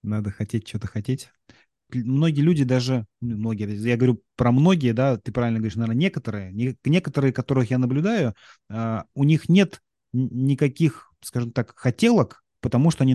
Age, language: 30-49, Russian